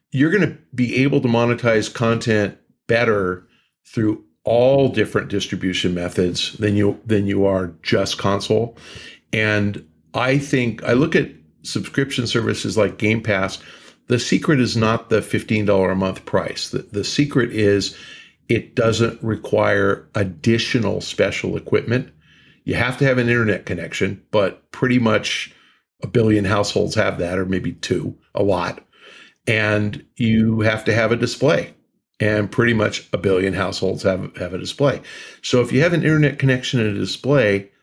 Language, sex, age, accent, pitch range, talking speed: English, male, 50-69, American, 105-130 Hz, 155 wpm